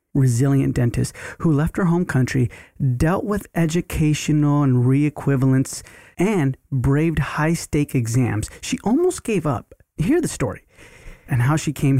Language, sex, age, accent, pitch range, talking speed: English, male, 30-49, American, 130-160 Hz, 140 wpm